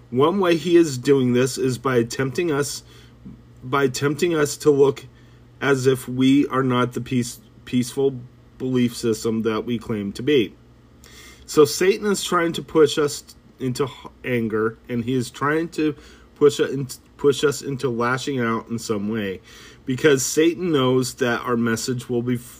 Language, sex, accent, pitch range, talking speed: English, male, American, 115-145 Hz, 165 wpm